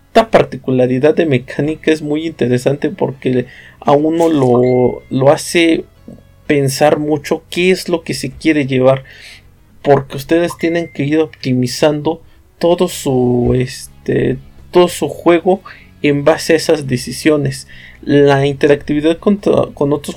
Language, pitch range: Spanish, 125-155 Hz